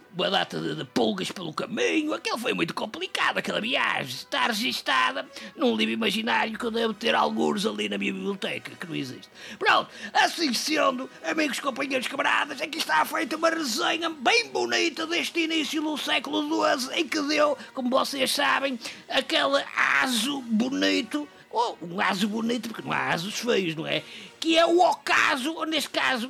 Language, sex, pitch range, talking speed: English, male, 235-315 Hz, 170 wpm